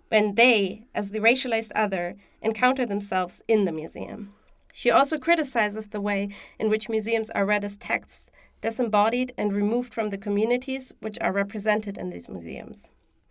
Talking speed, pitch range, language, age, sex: 160 wpm, 200-235 Hz, English, 30-49, female